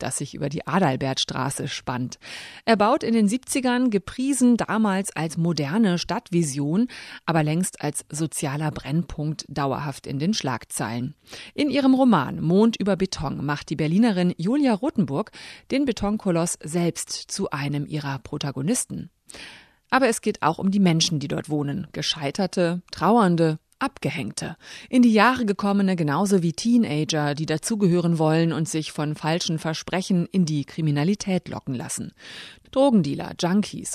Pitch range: 150-220 Hz